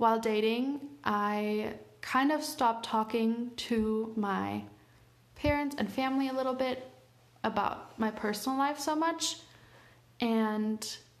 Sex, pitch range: female, 200-225 Hz